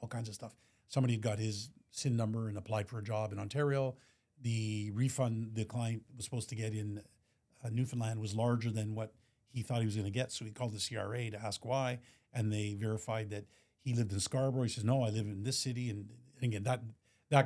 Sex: male